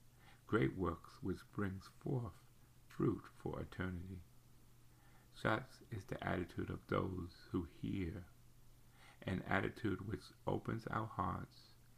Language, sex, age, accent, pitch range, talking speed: English, male, 50-69, American, 95-120 Hz, 110 wpm